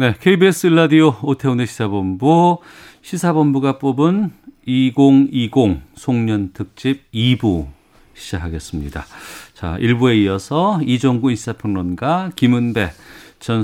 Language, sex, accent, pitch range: Korean, male, native, 95-135 Hz